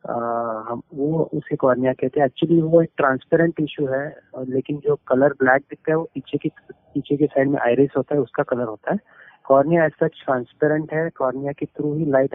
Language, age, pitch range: Hindi, 30-49, 135-165 Hz